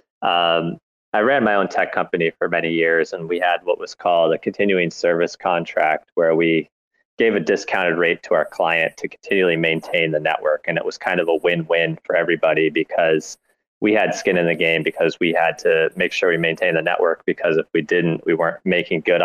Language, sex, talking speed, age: English, male, 210 wpm, 20-39